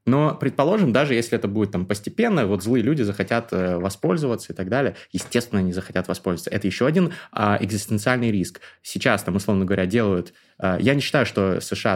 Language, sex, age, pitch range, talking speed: Russian, male, 20-39, 95-125 Hz, 185 wpm